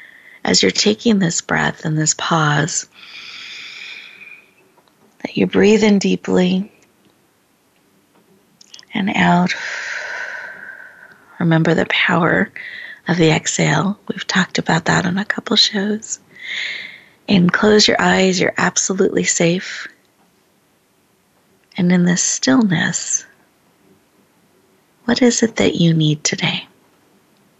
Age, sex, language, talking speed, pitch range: 30-49, female, English, 100 wpm, 170-235 Hz